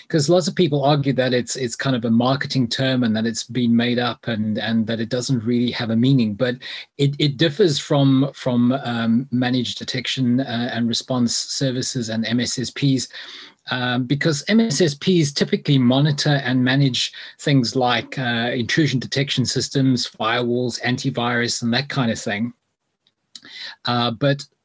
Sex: male